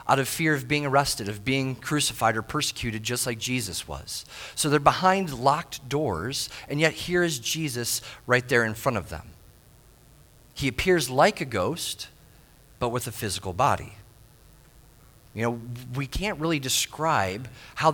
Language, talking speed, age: English, 160 wpm, 40-59